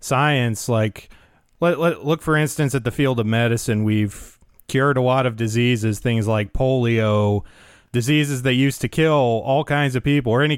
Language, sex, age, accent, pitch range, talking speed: English, male, 30-49, American, 115-145 Hz, 170 wpm